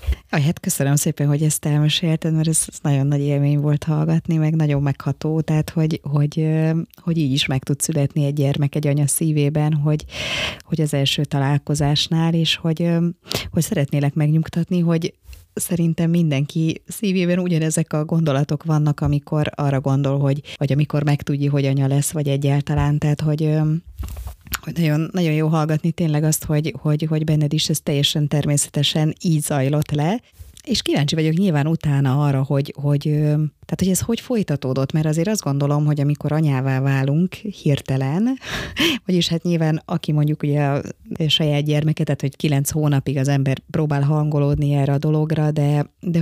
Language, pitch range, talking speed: Hungarian, 140-160 Hz, 160 wpm